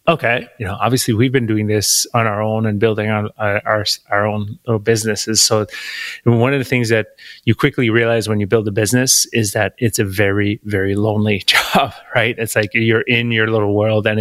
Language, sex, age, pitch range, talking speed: English, male, 30-49, 105-125 Hz, 210 wpm